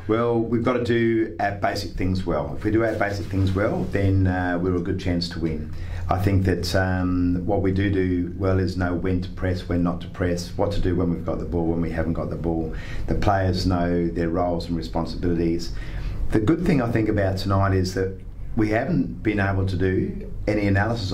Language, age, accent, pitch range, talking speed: English, 30-49, Australian, 85-95 Hz, 225 wpm